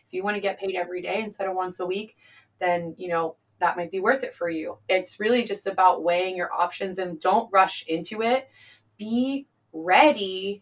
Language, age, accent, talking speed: English, 20-39, American, 210 wpm